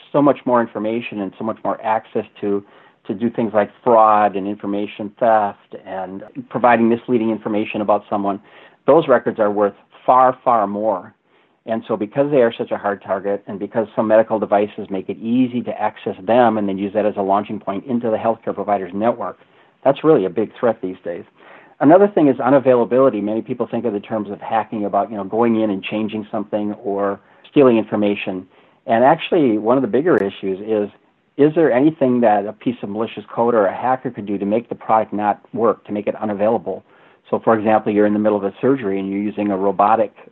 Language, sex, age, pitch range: English, male, 40-59, 100-115 Hz